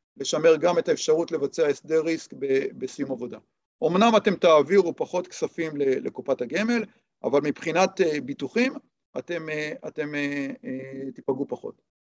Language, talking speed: Hebrew, 115 wpm